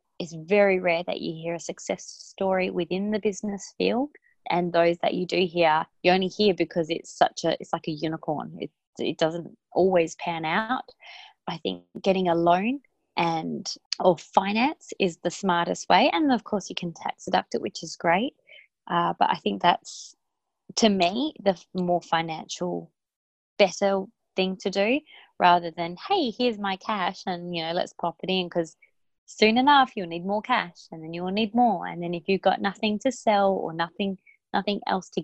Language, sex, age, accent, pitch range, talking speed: English, female, 20-39, Australian, 170-210 Hz, 190 wpm